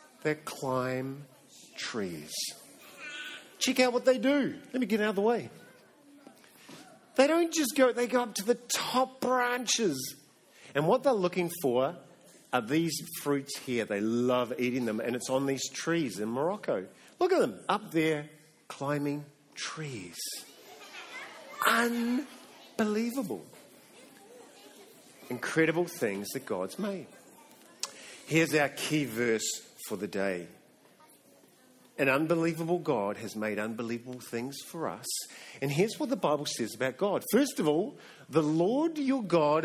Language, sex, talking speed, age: English, male, 135 wpm, 50-69